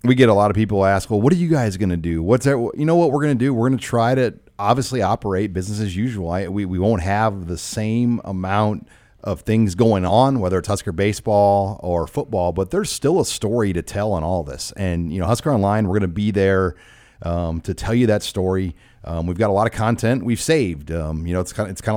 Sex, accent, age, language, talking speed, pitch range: male, American, 40-59, English, 250 wpm, 95-110 Hz